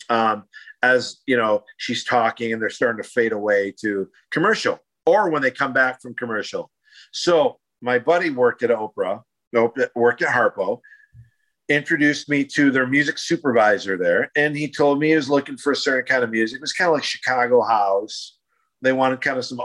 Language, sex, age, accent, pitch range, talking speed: English, male, 50-69, American, 115-145 Hz, 190 wpm